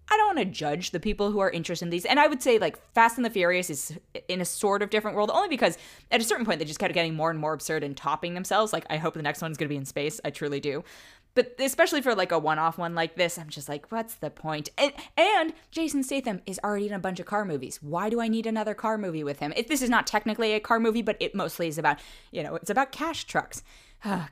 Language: English